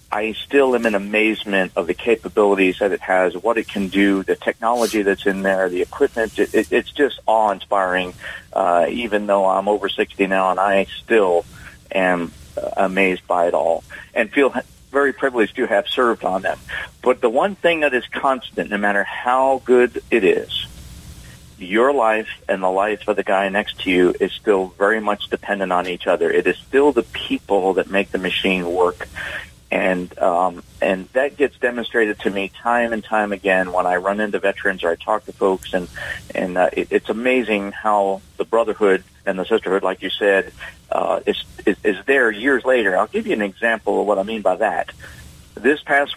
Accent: American